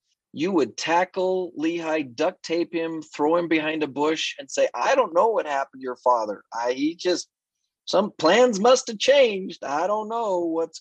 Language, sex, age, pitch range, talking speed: English, male, 30-49, 120-165 Hz, 190 wpm